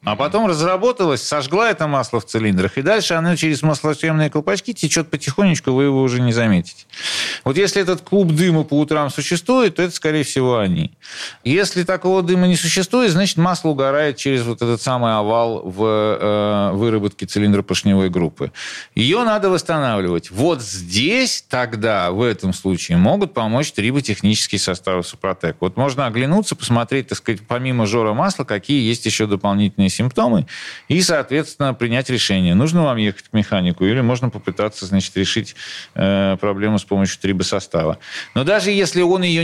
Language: Russian